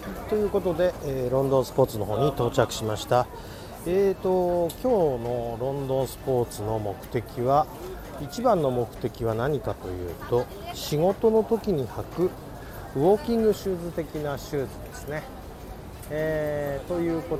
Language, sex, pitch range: Japanese, male, 120-175 Hz